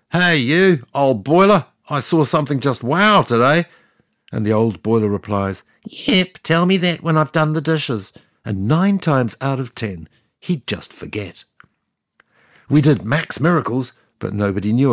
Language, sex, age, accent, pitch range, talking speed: English, male, 60-79, British, 105-155 Hz, 160 wpm